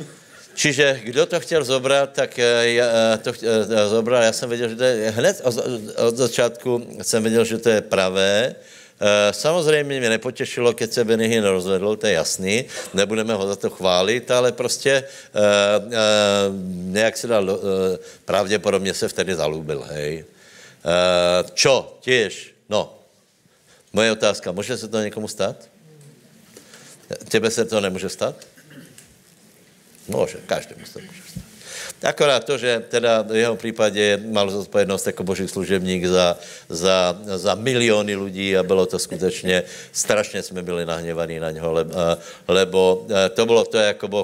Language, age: Slovak, 60-79